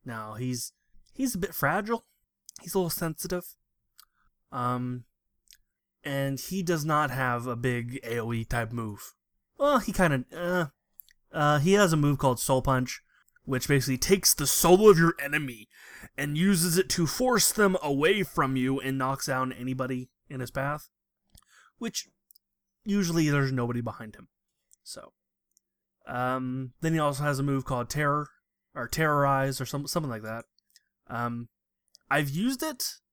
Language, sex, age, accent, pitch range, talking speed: English, male, 20-39, American, 125-165 Hz, 150 wpm